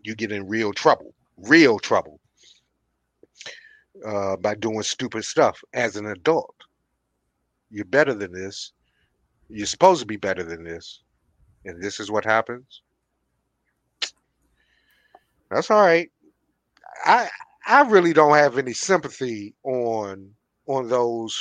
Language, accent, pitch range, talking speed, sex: English, American, 110-180 Hz, 125 wpm, male